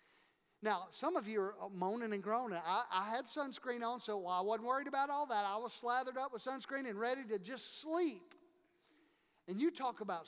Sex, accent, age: male, American, 50-69